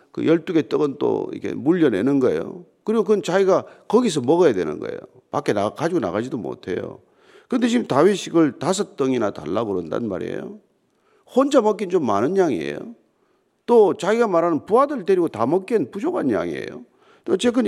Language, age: Korean, 40-59